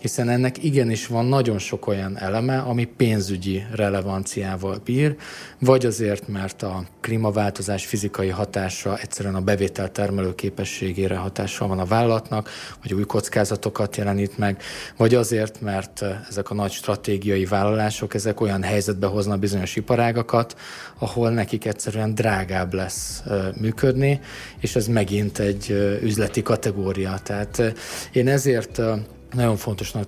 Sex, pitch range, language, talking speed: male, 100-115 Hz, Hungarian, 125 wpm